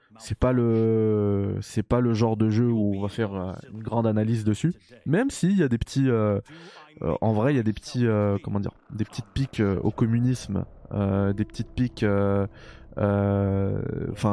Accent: French